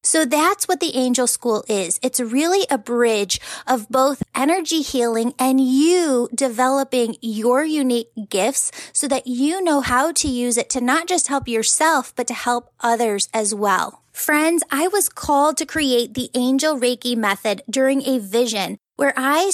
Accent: American